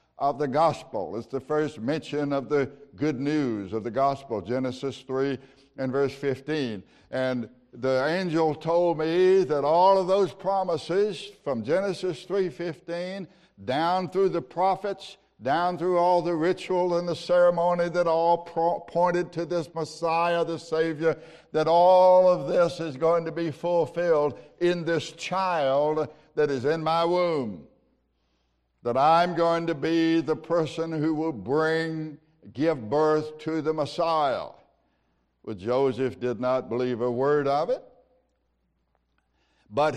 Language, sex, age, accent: English, male, 60-79, American